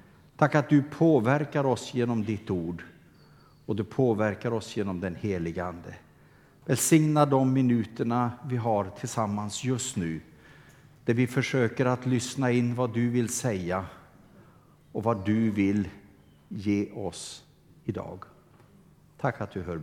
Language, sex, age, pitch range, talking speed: Swedish, male, 60-79, 115-150 Hz, 135 wpm